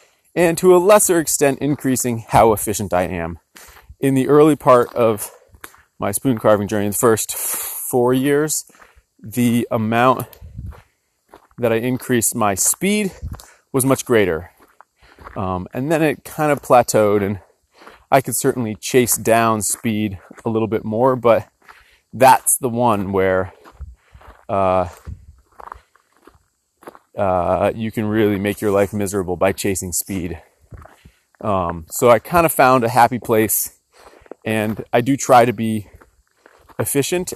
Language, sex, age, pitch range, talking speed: English, male, 30-49, 100-130 Hz, 135 wpm